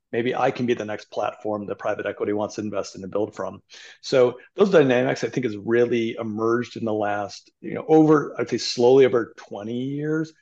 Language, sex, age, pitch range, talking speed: English, male, 40-59, 105-125 Hz, 215 wpm